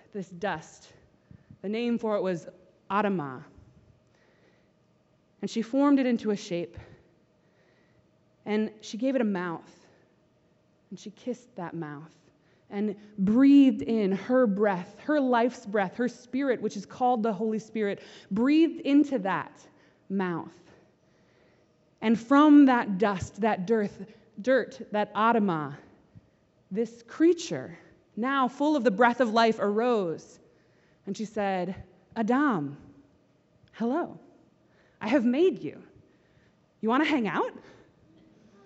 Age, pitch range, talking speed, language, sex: 20-39, 190-255 Hz, 120 wpm, English, female